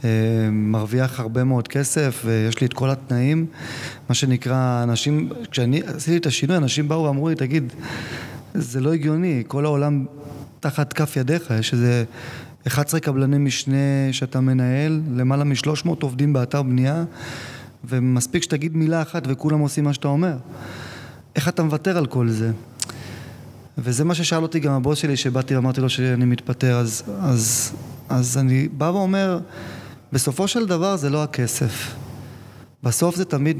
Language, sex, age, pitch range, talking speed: Hebrew, male, 20-39, 125-155 Hz, 150 wpm